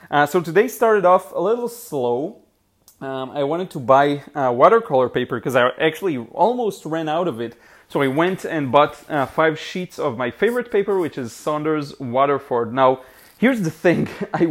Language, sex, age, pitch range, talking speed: English, male, 30-49, 130-175 Hz, 185 wpm